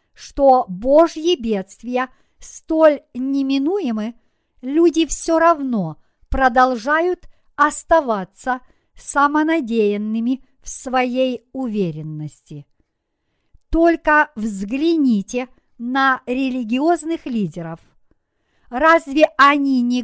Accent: native